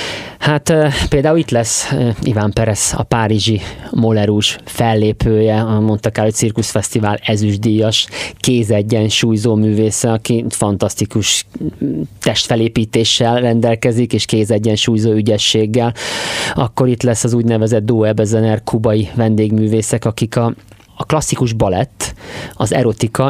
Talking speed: 100 wpm